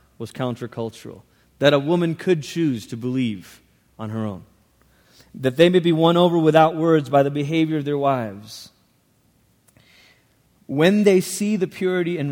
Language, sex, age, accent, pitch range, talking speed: English, male, 30-49, American, 130-165 Hz, 155 wpm